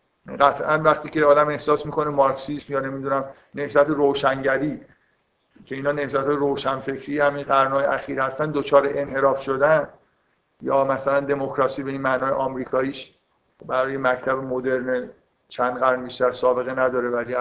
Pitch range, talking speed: 130-155 Hz, 130 wpm